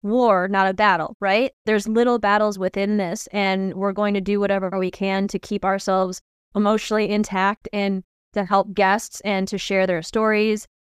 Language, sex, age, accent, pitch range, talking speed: English, female, 20-39, American, 195-230 Hz, 175 wpm